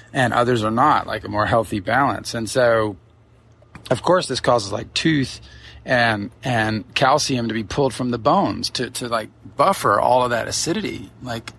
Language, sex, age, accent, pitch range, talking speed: English, male, 30-49, American, 110-125 Hz, 180 wpm